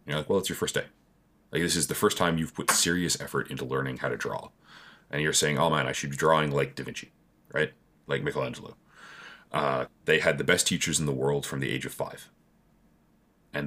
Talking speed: 230 wpm